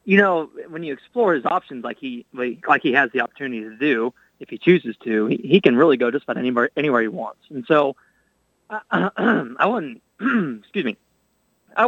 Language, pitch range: English, 115-140 Hz